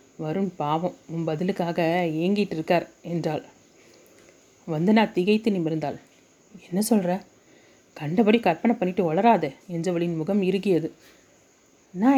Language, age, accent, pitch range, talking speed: Tamil, 30-49, native, 165-205 Hz, 100 wpm